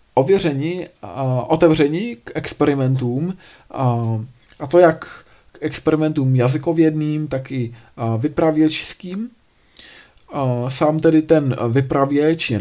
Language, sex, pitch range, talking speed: Czech, male, 125-145 Hz, 80 wpm